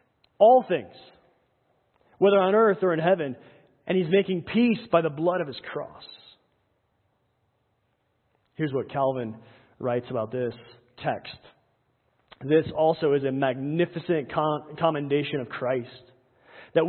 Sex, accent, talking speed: male, American, 120 wpm